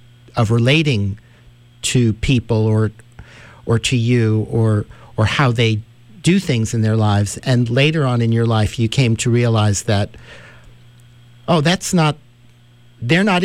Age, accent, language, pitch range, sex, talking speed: 50-69, American, English, 115-130 Hz, male, 145 wpm